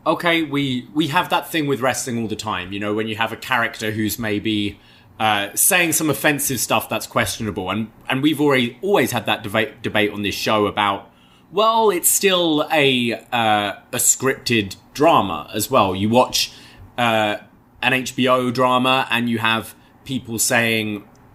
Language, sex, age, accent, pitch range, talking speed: English, male, 20-39, British, 105-130 Hz, 170 wpm